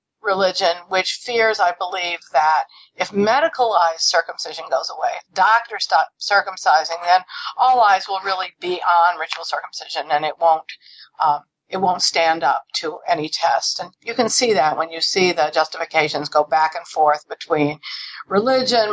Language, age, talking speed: English, 50-69, 160 wpm